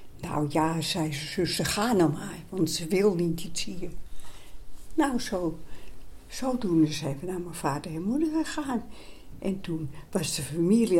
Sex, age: female, 60-79